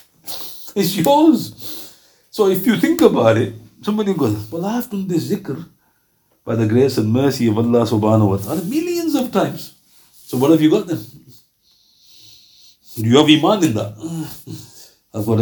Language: English